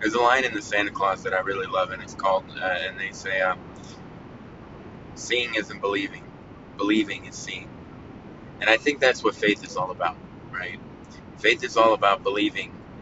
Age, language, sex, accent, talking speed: 30-49, English, male, American, 185 wpm